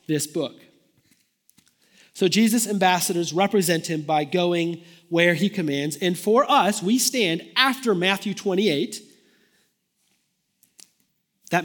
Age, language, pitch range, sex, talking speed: 30-49, English, 170-225 Hz, male, 110 wpm